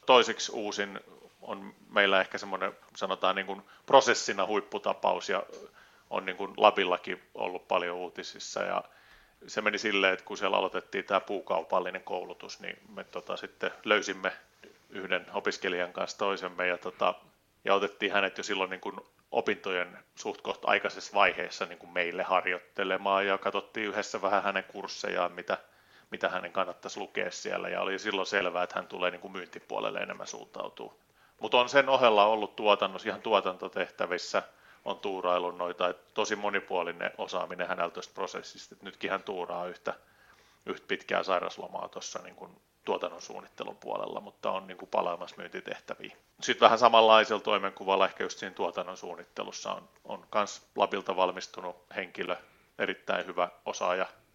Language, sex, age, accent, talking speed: Finnish, male, 30-49, native, 145 wpm